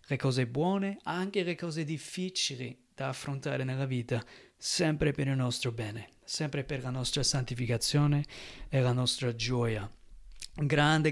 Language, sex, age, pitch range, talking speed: Italian, male, 30-49, 130-165 Hz, 140 wpm